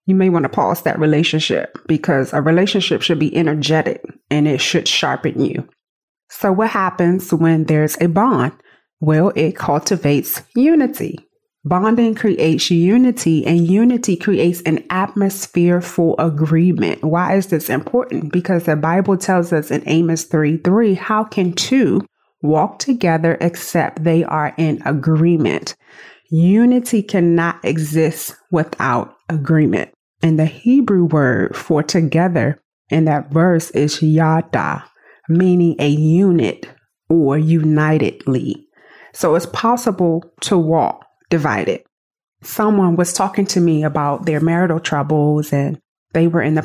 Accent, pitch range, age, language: American, 155-185 Hz, 30-49, English